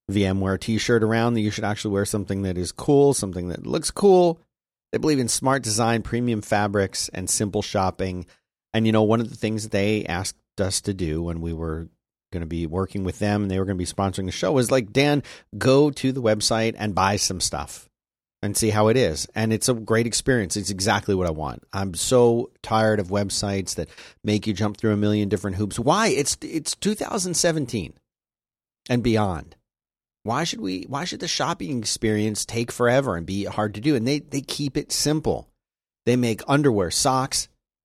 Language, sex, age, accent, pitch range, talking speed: English, male, 40-59, American, 100-130 Hz, 205 wpm